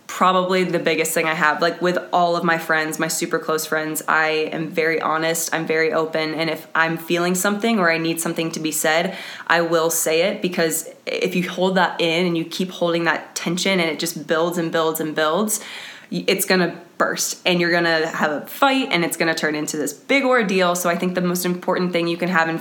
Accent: American